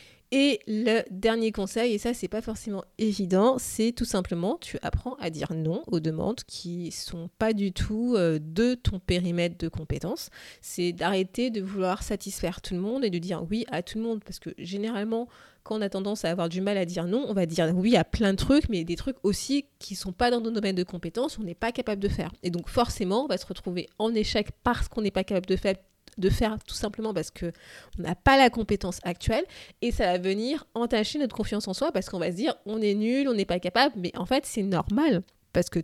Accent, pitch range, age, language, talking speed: French, 185-235 Hz, 30-49, French, 245 wpm